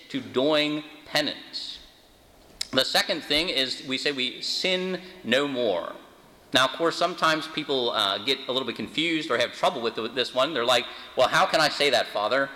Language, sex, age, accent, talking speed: English, male, 30-49, American, 195 wpm